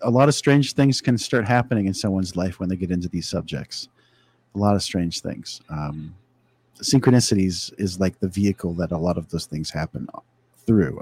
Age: 40-59